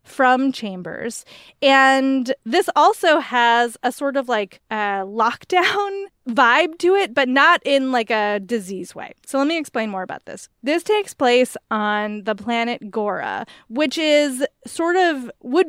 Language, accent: English, American